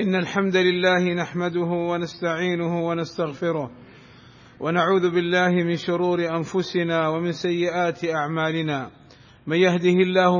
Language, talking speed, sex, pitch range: Arabic, 100 wpm, male, 165-185 Hz